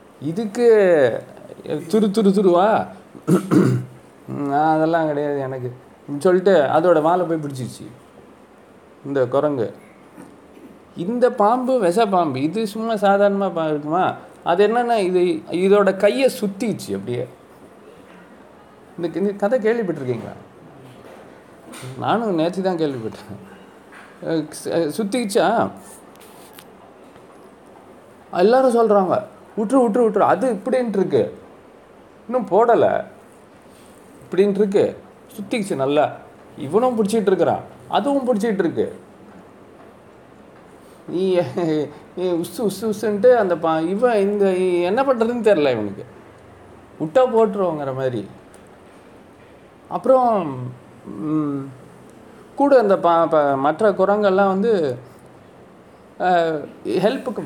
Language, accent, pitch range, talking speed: Tamil, native, 155-225 Hz, 80 wpm